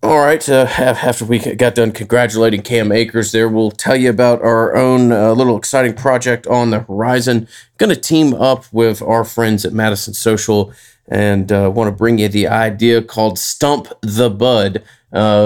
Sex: male